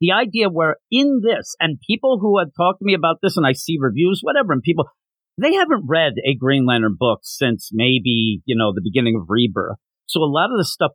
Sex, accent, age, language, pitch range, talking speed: male, American, 50-69, English, 130-190 Hz, 230 wpm